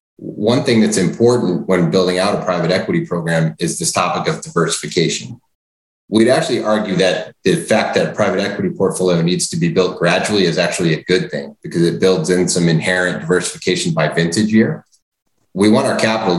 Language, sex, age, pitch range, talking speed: English, male, 30-49, 85-100 Hz, 185 wpm